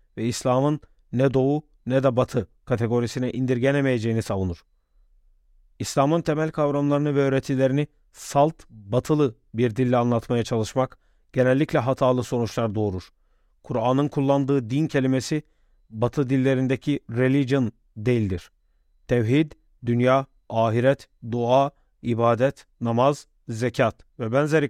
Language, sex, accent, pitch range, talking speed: Turkish, male, native, 120-140 Hz, 100 wpm